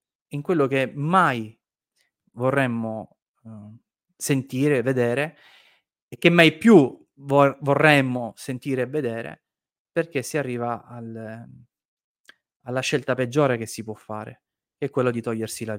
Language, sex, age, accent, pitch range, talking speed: Italian, male, 30-49, native, 110-130 Hz, 130 wpm